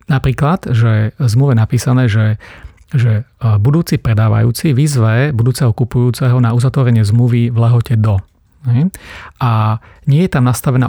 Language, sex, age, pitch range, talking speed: Slovak, male, 40-59, 110-125 Hz, 120 wpm